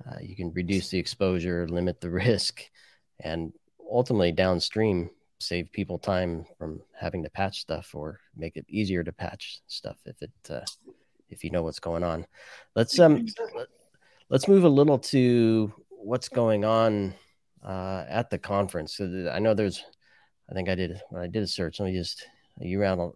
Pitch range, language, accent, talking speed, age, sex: 90-110 Hz, English, American, 175 wpm, 30-49, male